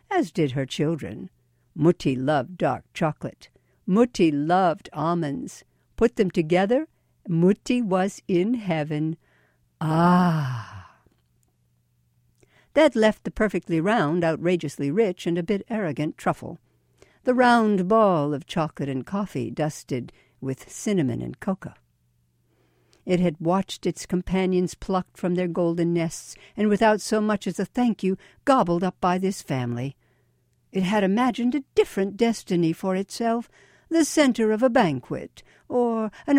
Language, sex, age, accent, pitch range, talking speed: English, female, 60-79, American, 135-200 Hz, 135 wpm